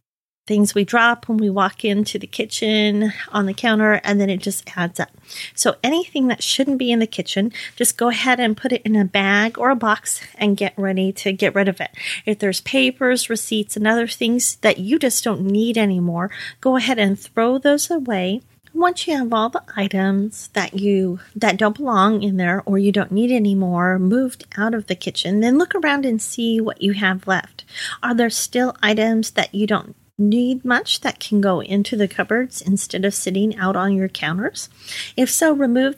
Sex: female